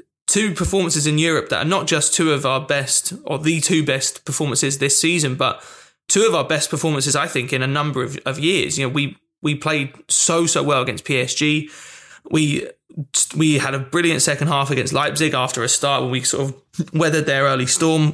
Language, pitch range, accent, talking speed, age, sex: English, 140-160 Hz, British, 210 wpm, 20-39, male